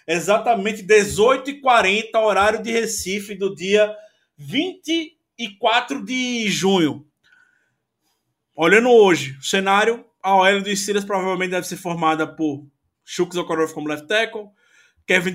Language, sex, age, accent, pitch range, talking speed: Portuguese, male, 20-39, Brazilian, 180-230 Hz, 115 wpm